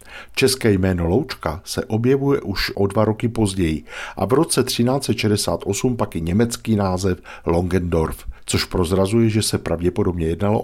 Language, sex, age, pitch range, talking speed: Czech, male, 50-69, 85-105 Hz, 140 wpm